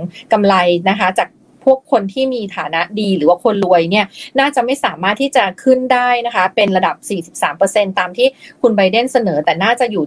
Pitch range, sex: 185-255 Hz, female